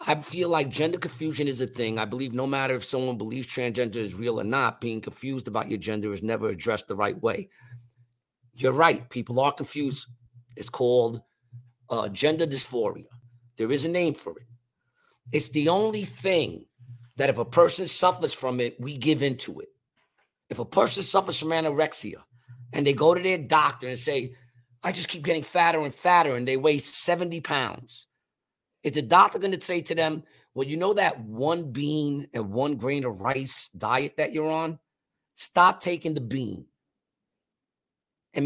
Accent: American